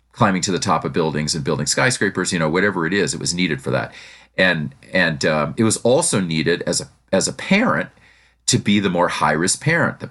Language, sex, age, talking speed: English, male, 40-59, 225 wpm